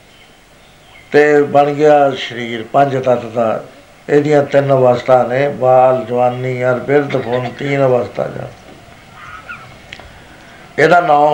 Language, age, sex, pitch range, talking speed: Punjabi, 60-79, male, 130-160 Hz, 110 wpm